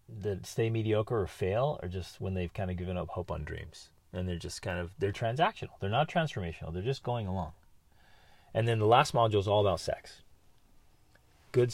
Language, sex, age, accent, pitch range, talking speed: English, male, 30-49, American, 90-115 Hz, 205 wpm